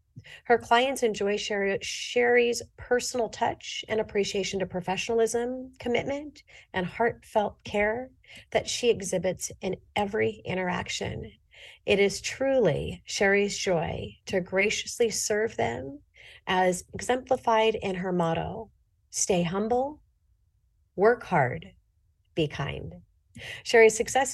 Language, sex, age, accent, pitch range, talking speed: English, female, 40-59, American, 175-220 Hz, 105 wpm